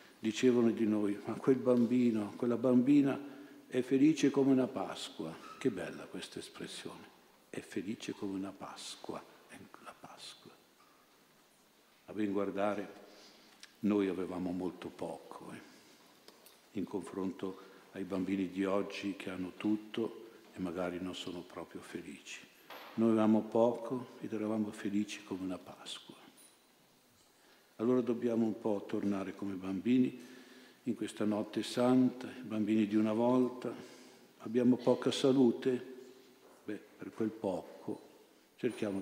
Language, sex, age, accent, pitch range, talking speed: Italian, male, 50-69, native, 105-125 Hz, 125 wpm